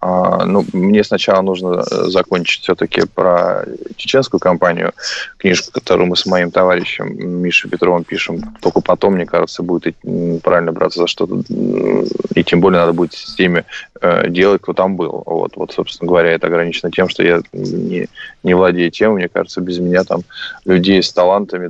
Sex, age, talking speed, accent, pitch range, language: male, 20-39, 165 wpm, native, 90-105 Hz, Russian